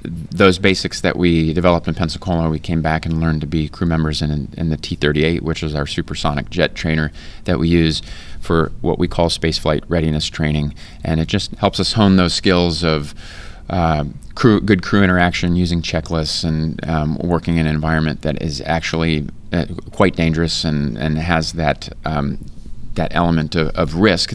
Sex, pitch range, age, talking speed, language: male, 80-95 Hz, 30-49, 180 wpm, English